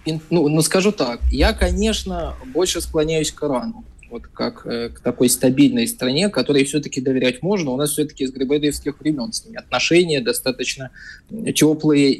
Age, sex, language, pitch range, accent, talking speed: 20-39, male, Russian, 125-150 Hz, native, 150 wpm